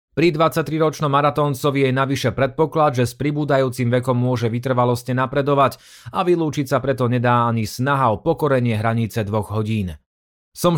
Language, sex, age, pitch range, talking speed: Slovak, male, 30-49, 120-150 Hz, 145 wpm